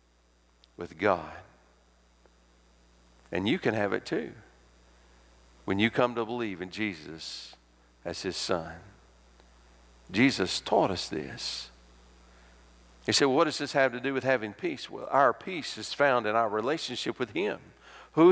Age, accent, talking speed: 50-69, American, 145 wpm